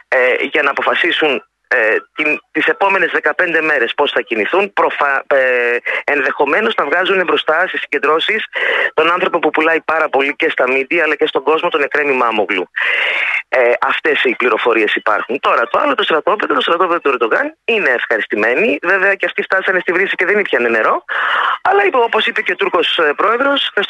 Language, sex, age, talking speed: Greek, male, 30-49, 175 wpm